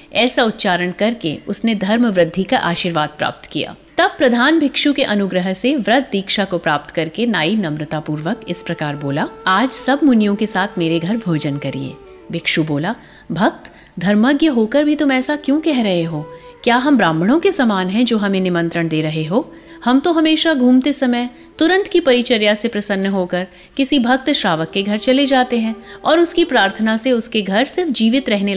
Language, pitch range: Hindi, 175-260 Hz